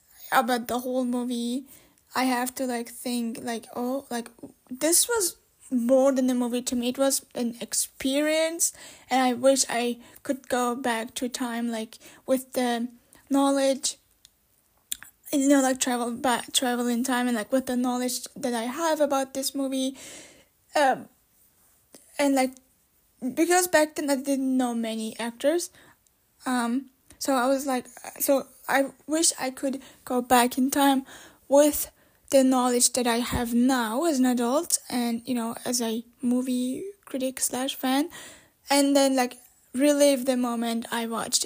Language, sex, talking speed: English, female, 160 wpm